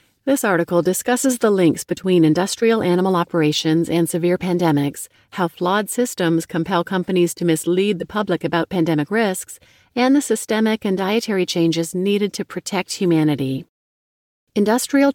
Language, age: English, 40-59